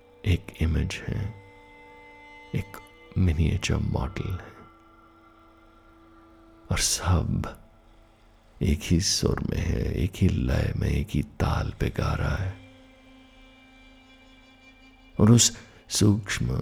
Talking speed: 100 wpm